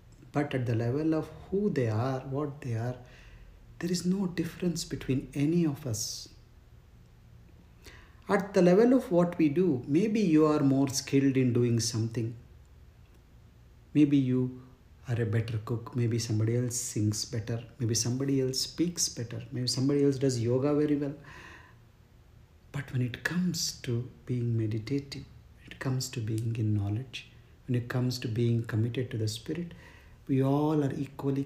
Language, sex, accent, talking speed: English, male, Indian, 160 wpm